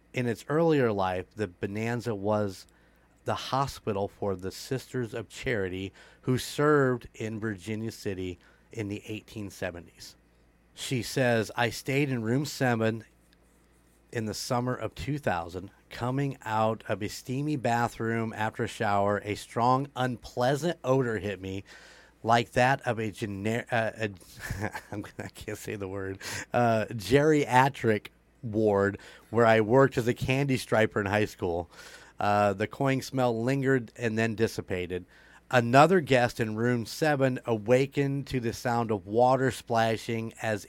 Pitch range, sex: 100-125 Hz, male